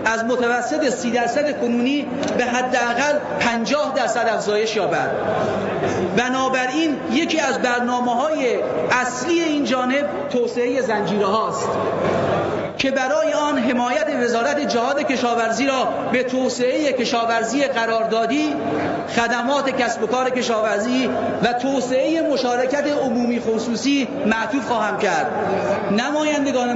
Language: Persian